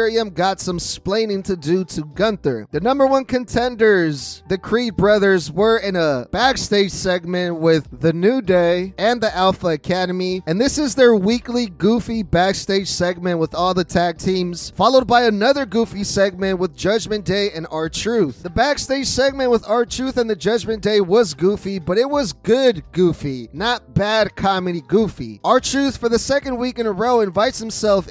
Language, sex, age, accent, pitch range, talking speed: English, male, 30-49, American, 180-235 Hz, 170 wpm